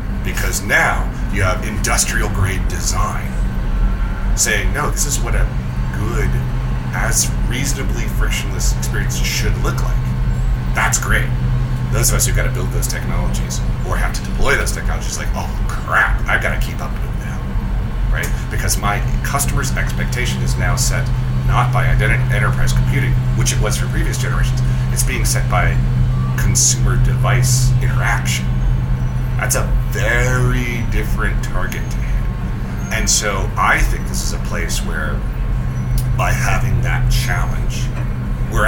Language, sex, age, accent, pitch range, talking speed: English, male, 30-49, American, 110-125 Hz, 145 wpm